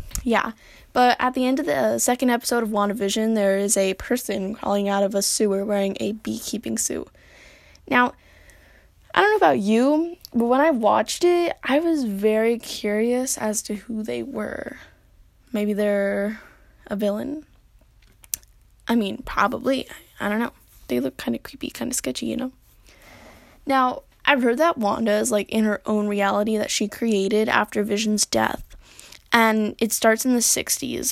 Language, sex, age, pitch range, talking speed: English, female, 10-29, 210-255 Hz, 170 wpm